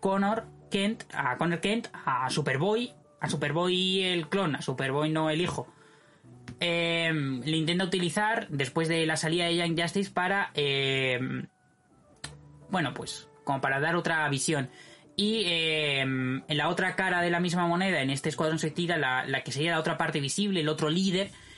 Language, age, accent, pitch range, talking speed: Spanish, 20-39, Spanish, 140-180 Hz, 170 wpm